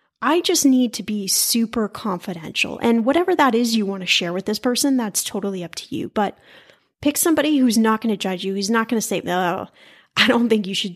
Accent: American